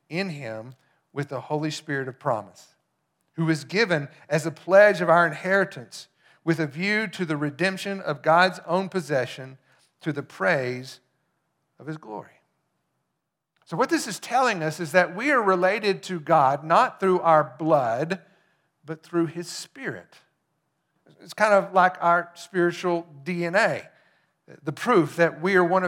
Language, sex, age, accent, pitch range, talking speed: English, male, 50-69, American, 155-195 Hz, 155 wpm